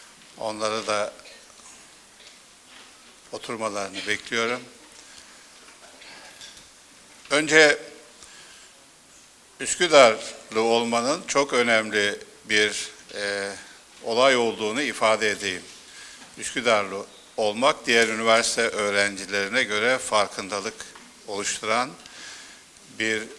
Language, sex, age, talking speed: Turkish, male, 60-79, 60 wpm